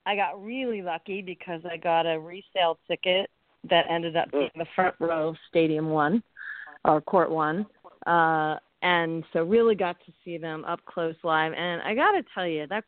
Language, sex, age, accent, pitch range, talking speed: English, female, 40-59, American, 155-185 Hz, 185 wpm